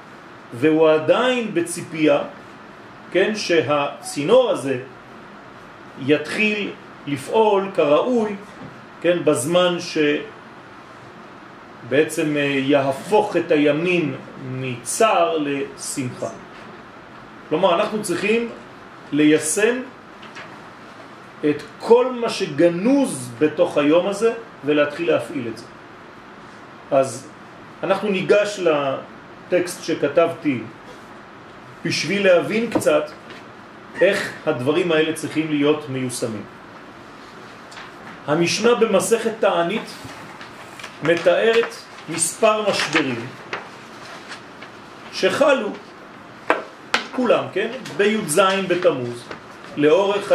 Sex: male